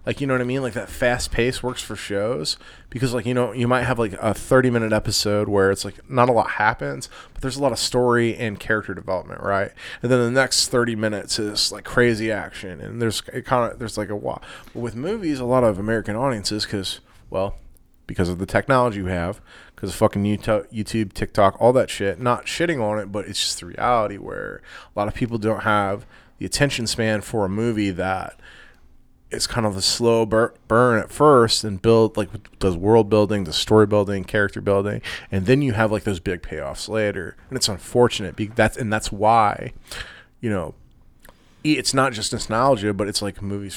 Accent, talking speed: American, 210 wpm